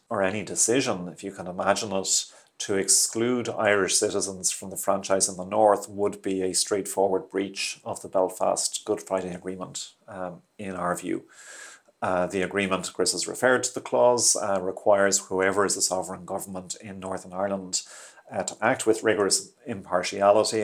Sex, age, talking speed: male, 40-59, 165 wpm